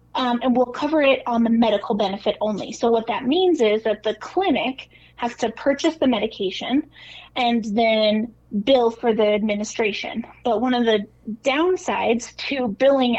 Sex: female